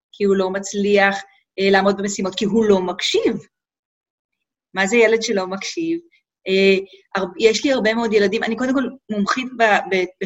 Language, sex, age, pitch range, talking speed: Hebrew, female, 30-49, 185-260 Hz, 170 wpm